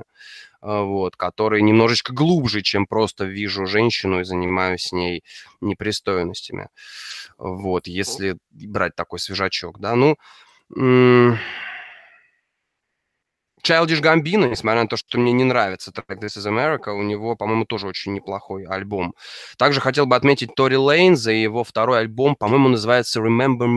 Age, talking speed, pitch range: 20-39, 135 wpm, 105-135 Hz